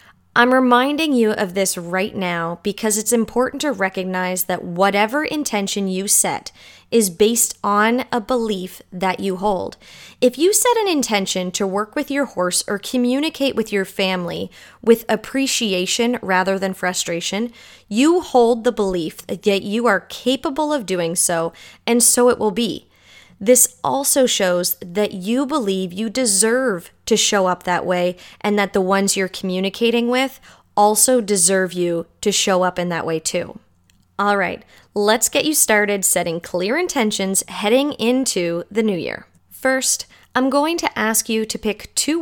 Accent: American